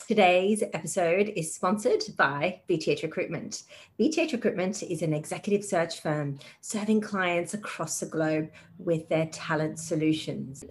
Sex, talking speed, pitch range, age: female, 130 wpm, 160-205 Hz, 30-49